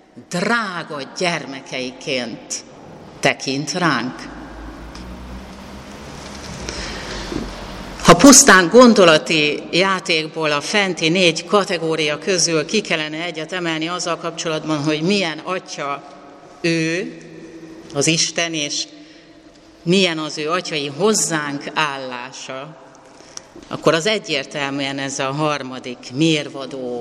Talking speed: 85 wpm